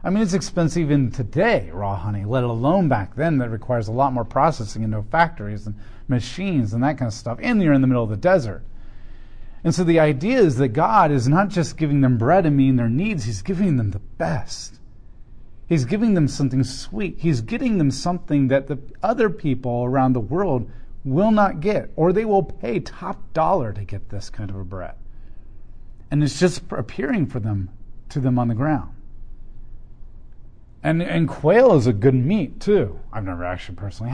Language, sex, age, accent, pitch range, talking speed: English, male, 40-59, American, 115-180 Hz, 200 wpm